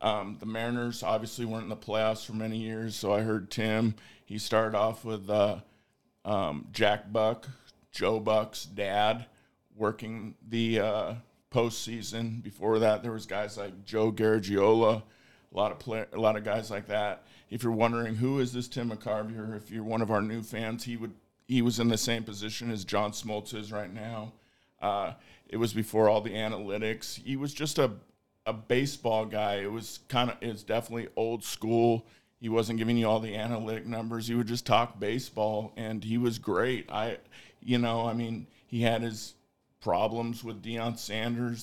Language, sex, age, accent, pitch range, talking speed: English, male, 50-69, American, 110-120 Hz, 185 wpm